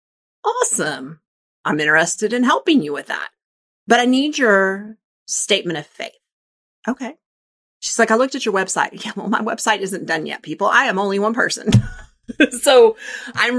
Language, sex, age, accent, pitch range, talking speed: English, female, 30-49, American, 180-255 Hz, 170 wpm